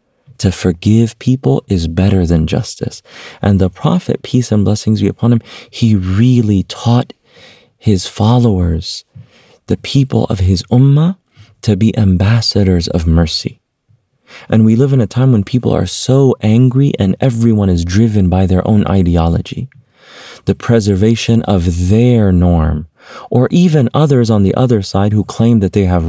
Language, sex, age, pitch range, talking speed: English, male, 30-49, 95-115 Hz, 155 wpm